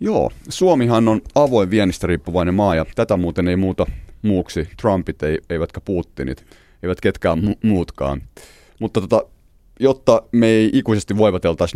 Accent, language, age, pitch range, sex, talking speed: native, Finnish, 30-49, 80-115 Hz, male, 140 wpm